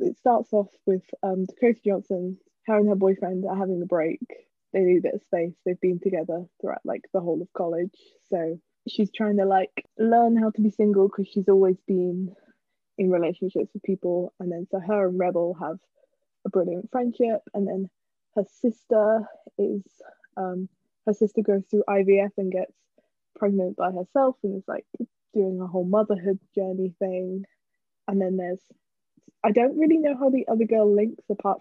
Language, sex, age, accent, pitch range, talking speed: English, female, 20-39, British, 185-220 Hz, 180 wpm